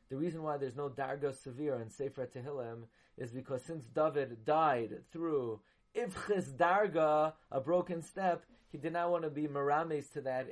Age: 30-49